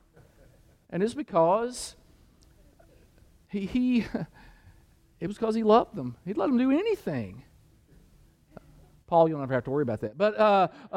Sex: male